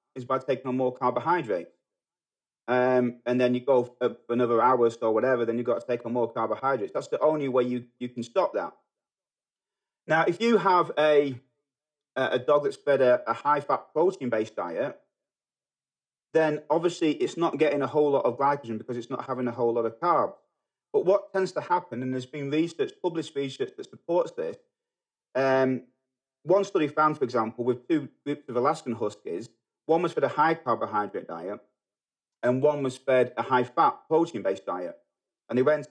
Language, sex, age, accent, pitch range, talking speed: English, male, 30-49, British, 125-155 Hz, 185 wpm